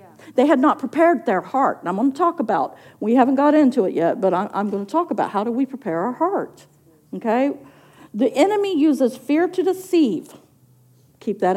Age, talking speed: 50-69, 205 wpm